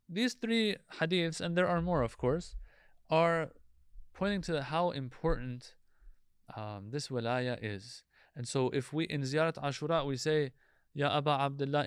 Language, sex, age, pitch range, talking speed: English, male, 20-39, 125-155 Hz, 150 wpm